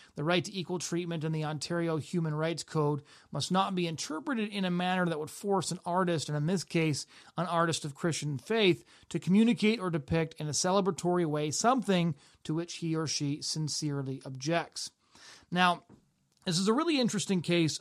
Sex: male